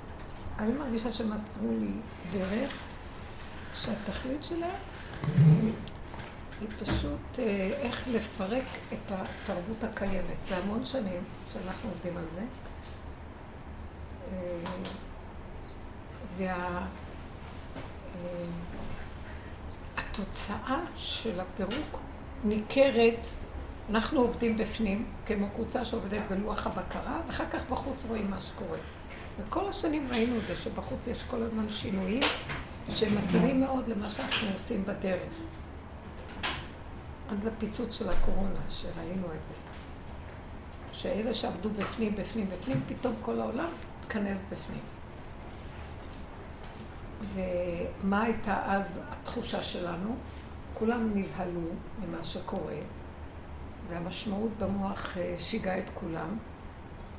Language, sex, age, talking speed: Hebrew, female, 60-79, 90 wpm